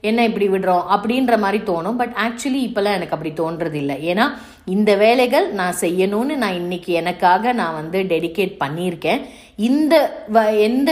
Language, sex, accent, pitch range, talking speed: Tamil, female, native, 170-225 Hz, 150 wpm